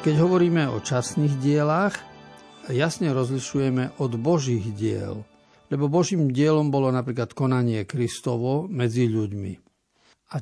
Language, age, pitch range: Slovak, 50-69, 120-150 Hz